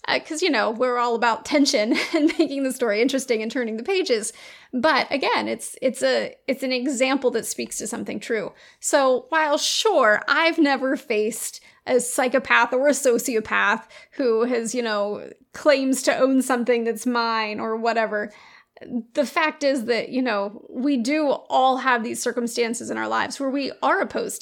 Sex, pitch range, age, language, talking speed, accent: female, 235-280 Hz, 30-49, English, 175 wpm, American